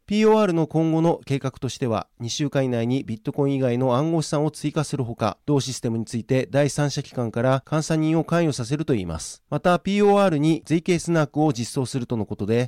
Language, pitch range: Japanese, 125-155 Hz